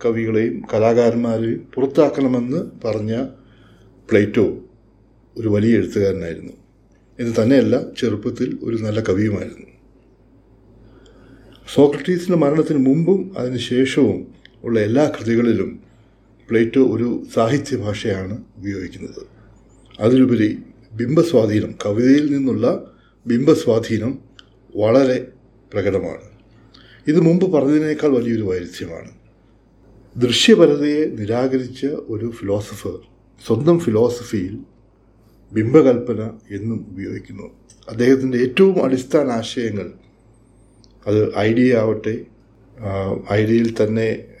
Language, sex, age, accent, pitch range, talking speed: Malayalam, male, 60-79, native, 110-130 Hz, 75 wpm